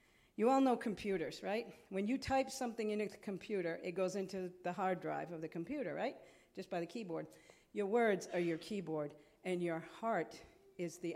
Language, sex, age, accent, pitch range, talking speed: English, female, 50-69, American, 185-240 Hz, 195 wpm